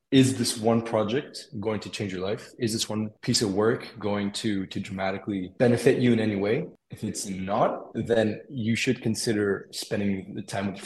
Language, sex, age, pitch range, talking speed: English, male, 20-39, 100-125 Hz, 200 wpm